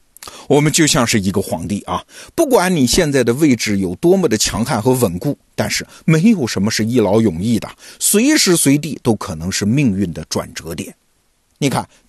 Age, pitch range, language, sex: 50-69, 95-145 Hz, Chinese, male